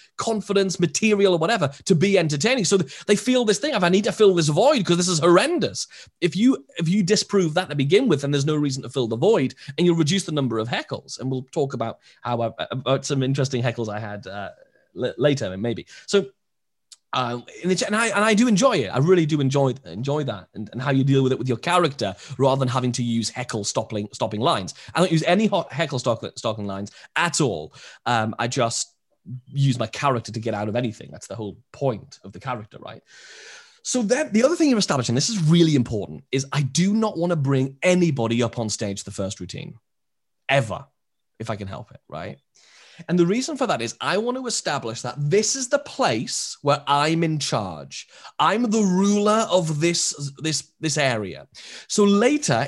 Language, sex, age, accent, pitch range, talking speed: English, male, 30-49, British, 125-190 Hz, 210 wpm